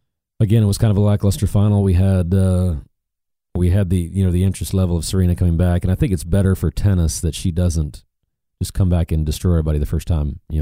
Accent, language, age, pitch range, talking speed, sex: American, English, 40-59, 80-95 Hz, 245 wpm, male